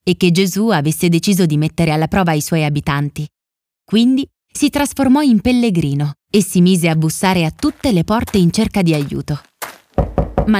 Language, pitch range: Italian, 160-215 Hz